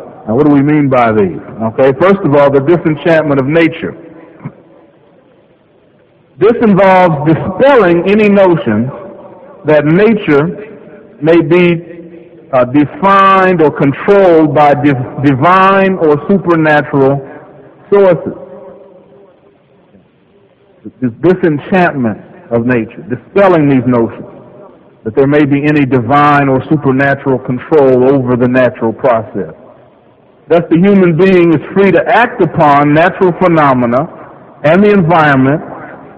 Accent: American